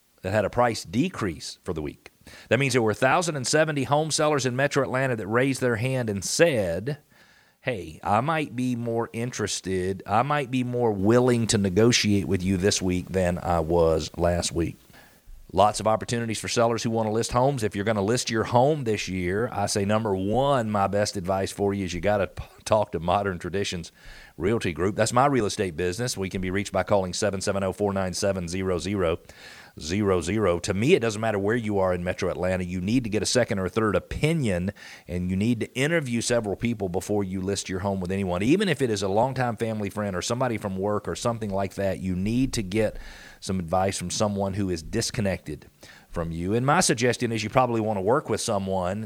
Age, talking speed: 40-59, 210 wpm